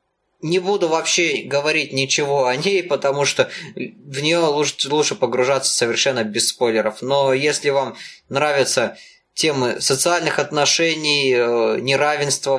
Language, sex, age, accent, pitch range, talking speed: Russian, male, 20-39, native, 125-160 Hz, 115 wpm